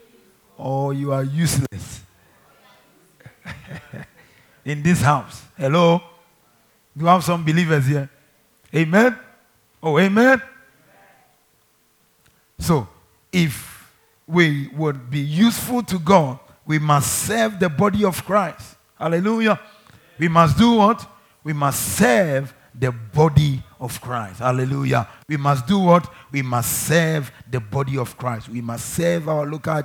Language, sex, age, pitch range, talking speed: English, male, 50-69, 135-165 Hz, 125 wpm